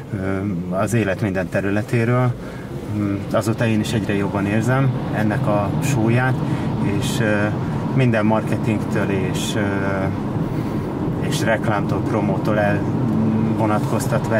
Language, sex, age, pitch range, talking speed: Hungarian, male, 30-49, 105-135 Hz, 90 wpm